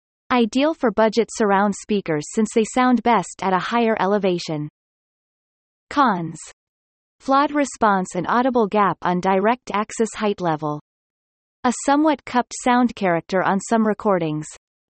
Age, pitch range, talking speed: 30-49, 180-245 Hz, 130 wpm